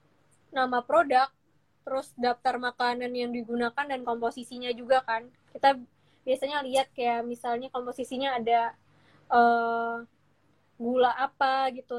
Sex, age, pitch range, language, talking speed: female, 20-39, 240-265 Hz, Indonesian, 110 wpm